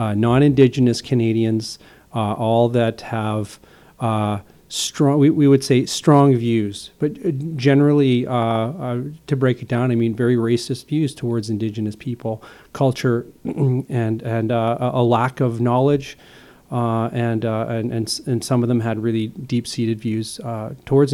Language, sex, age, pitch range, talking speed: English, male, 40-59, 115-135 Hz, 145 wpm